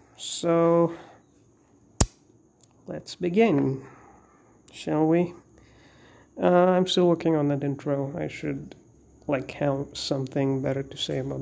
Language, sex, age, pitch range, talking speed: English, male, 30-49, 145-170 Hz, 110 wpm